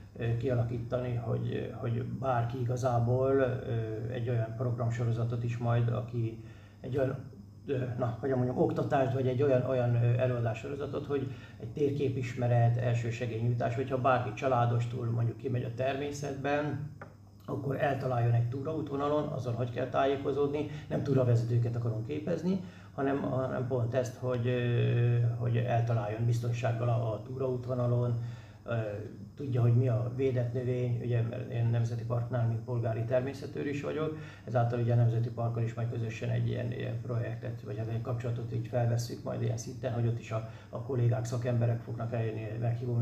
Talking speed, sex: 140 wpm, male